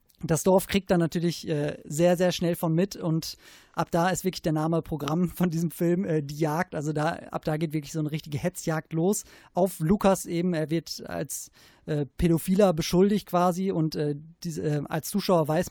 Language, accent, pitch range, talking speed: German, German, 155-175 Hz, 200 wpm